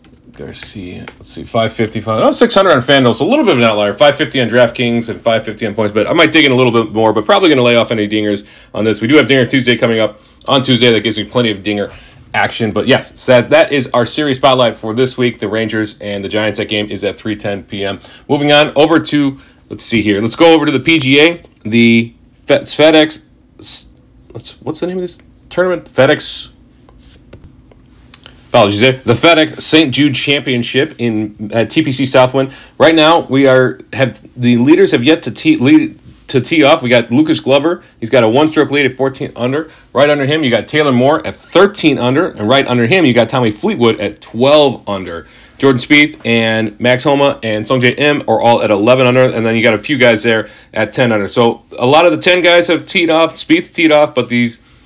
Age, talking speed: 40-59, 220 wpm